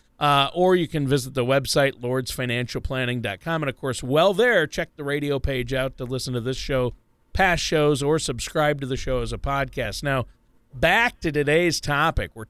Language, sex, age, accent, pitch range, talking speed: English, male, 40-59, American, 125-165 Hz, 185 wpm